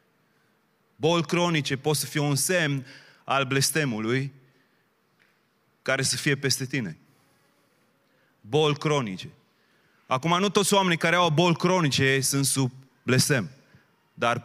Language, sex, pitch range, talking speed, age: Romanian, male, 145-185 Hz, 115 wpm, 30-49